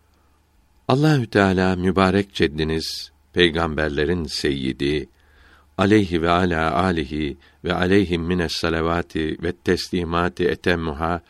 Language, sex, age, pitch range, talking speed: Turkish, male, 60-79, 80-100 Hz, 90 wpm